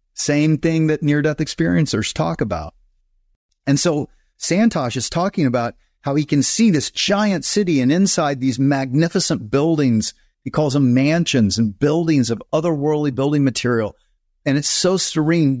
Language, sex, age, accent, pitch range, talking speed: English, male, 40-59, American, 115-155 Hz, 150 wpm